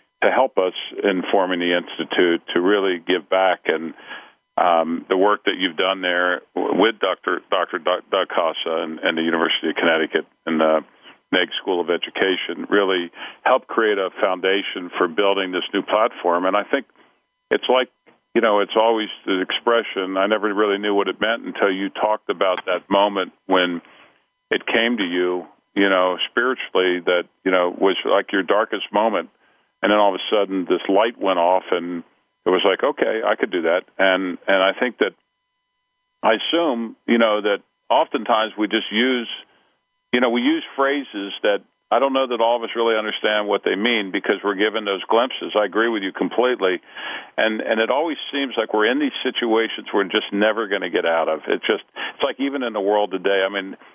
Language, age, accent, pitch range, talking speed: English, 50-69, American, 95-115 Hz, 195 wpm